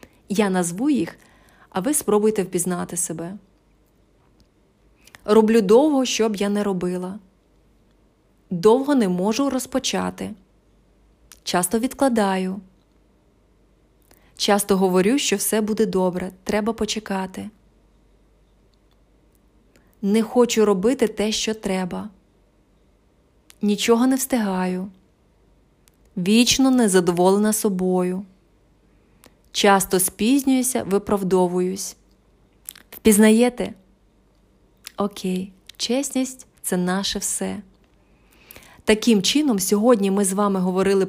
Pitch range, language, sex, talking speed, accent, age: 190-225 Hz, Ukrainian, female, 85 wpm, native, 20-39